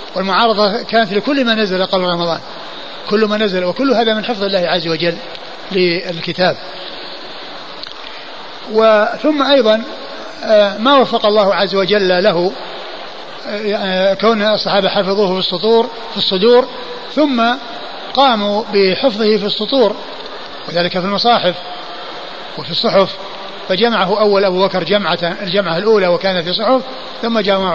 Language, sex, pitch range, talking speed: Arabic, male, 185-225 Hz, 120 wpm